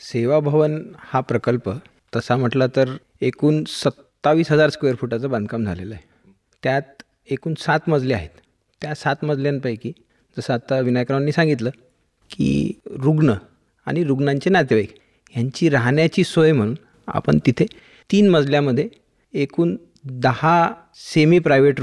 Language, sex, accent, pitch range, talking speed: Hindi, male, native, 120-155 Hz, 115 wpm